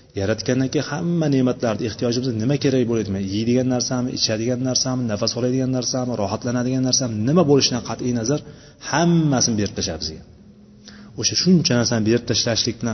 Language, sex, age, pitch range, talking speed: Bulgarian, male, 30-49, 110-140 Hz, 160 wpm